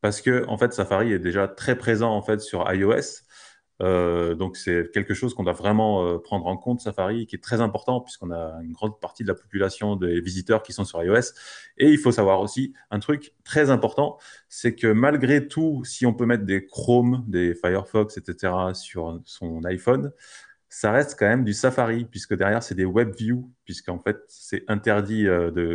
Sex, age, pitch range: male, 20-39, 95-120 Hz